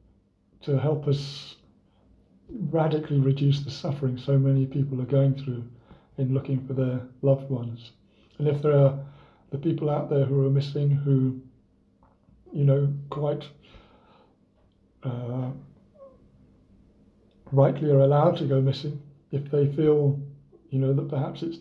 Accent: British